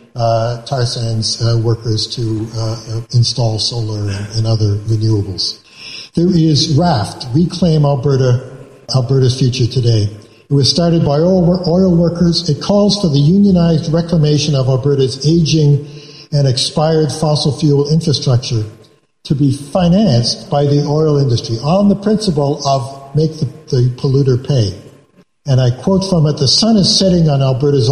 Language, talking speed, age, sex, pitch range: English, 150 wpm, 60-79, male, 125-160 Hz